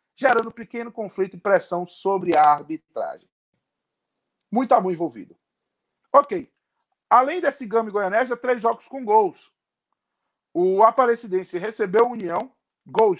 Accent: Brazilian